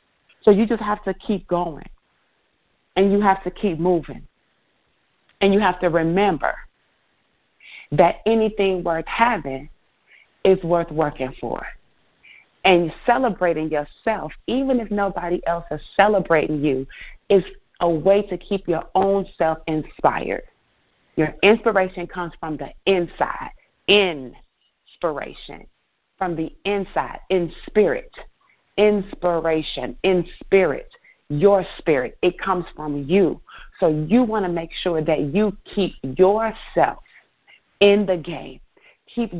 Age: 30-49